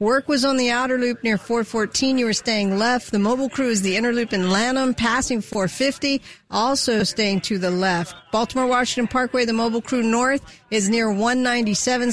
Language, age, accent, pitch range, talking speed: English, 50-69, American, 205-260 Hz, 185 wpm